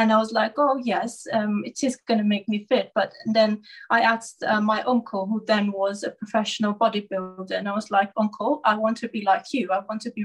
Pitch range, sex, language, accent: 205-235 Hz, female, English, British